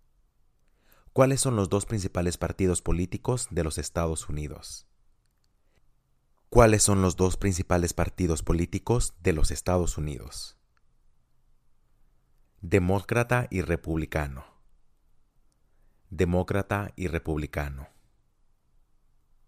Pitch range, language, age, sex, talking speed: 80-100 Hz, English, 30-49, male, 85 wpm